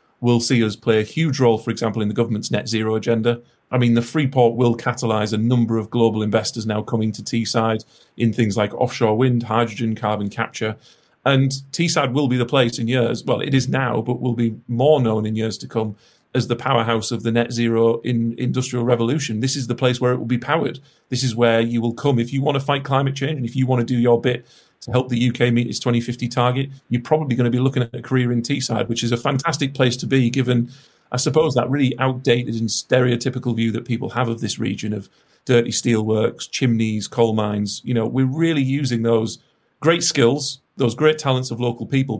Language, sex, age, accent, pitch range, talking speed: English, male, 40-59, British, 115-130 Hz, 230 wpm